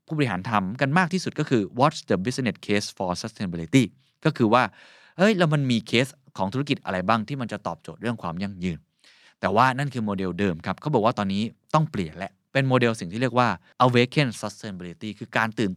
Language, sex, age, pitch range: Thai, male, 20-39, 105-140 Hz